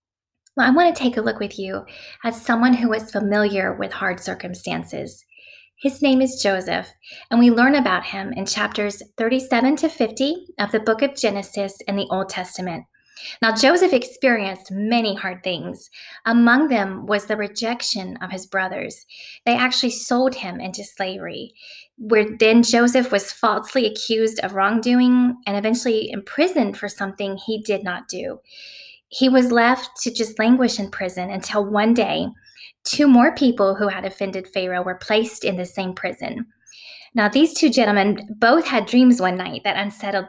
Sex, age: female, 20-39